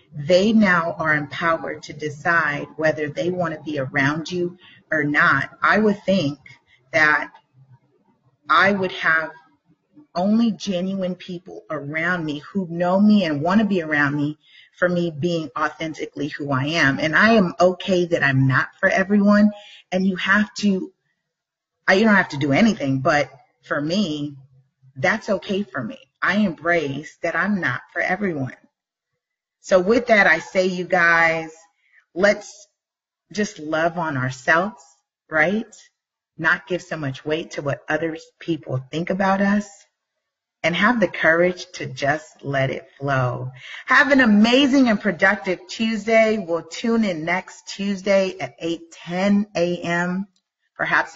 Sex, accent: female, American